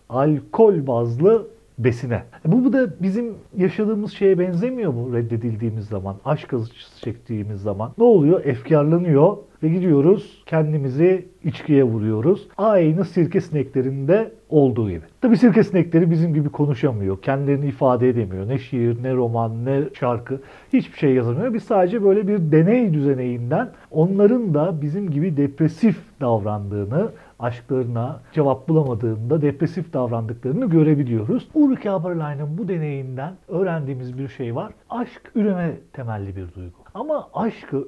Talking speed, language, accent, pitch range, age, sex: 125 wpm, Turkish, native, 125-195 Hz, 50-69, male